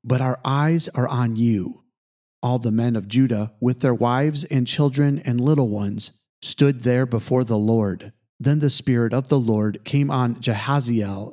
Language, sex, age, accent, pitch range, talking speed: English, male, 40-59, American, 115-145 Hz, 175 wpm